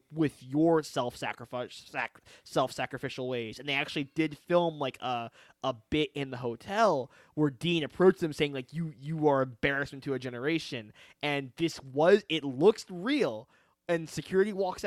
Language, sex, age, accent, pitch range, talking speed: English, male, 20-39, American, 135-160 Hz, 170 wpm